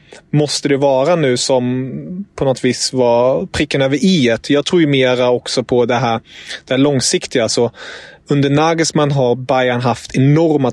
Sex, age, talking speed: male, 30-49, 170 wpm